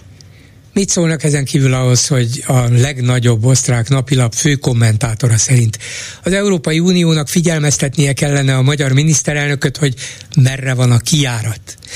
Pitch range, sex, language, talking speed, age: 115-150 Hz, male, Hungarian, 130 wpm, 60-79